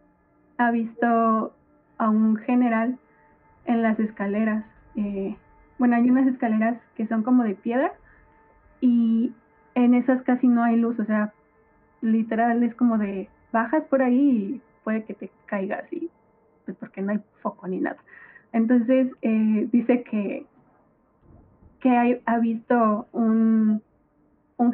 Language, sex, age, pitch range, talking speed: Spanish, female, 20-39, 220-260 Hz, 140 wpm